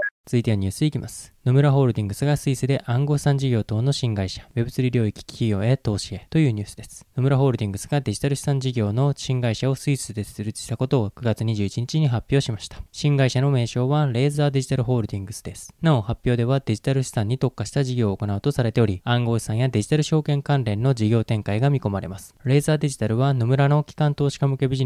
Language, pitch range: Japanese, 115-140 Hz